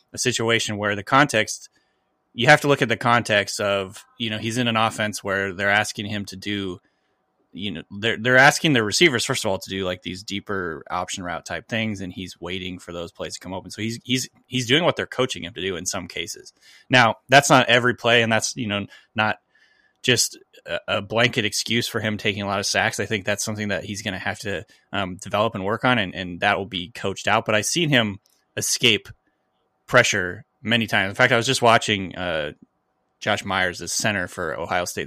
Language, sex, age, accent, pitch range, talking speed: English, male, 20-39, American, 95-120 Hz, 230 wpm